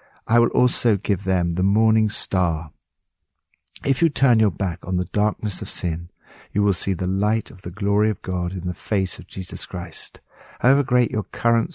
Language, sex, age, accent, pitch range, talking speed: English, male, 60-79, British, 90-120 Hz, 195 wpm